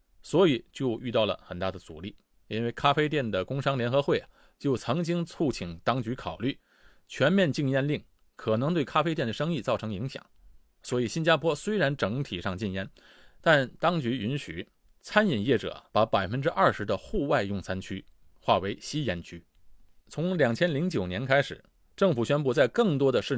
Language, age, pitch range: Chinese, 20-39, 100-155 Hz